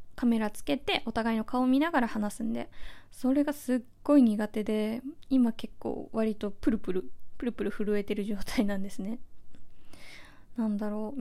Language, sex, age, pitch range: Japanese, female, 20-39, 205-255 Hz